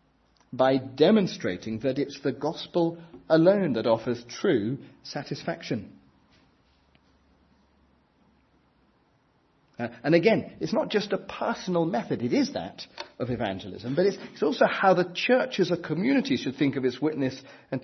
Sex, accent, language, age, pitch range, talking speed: male, British, English, 40-59, 125-185 Hz, 140 wpm